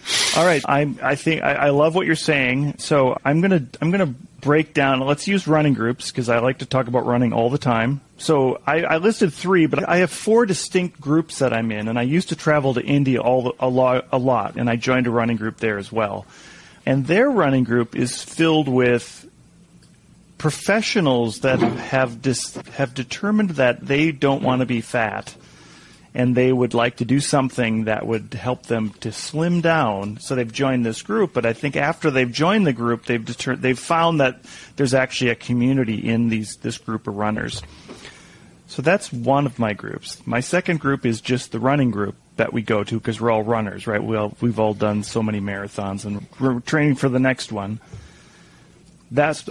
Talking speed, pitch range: 200 wpm, 115-150 Hz